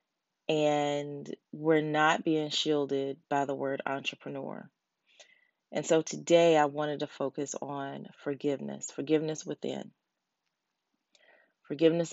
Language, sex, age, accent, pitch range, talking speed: English, female, 30-49, American, 140-160 Hz, 105 wpm